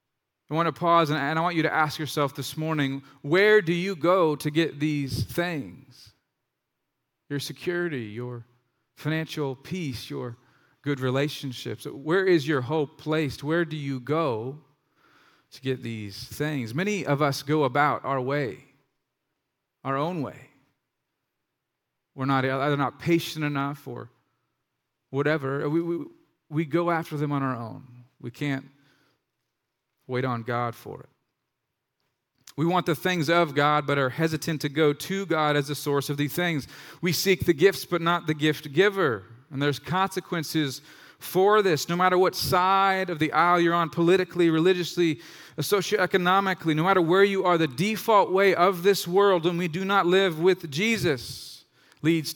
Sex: male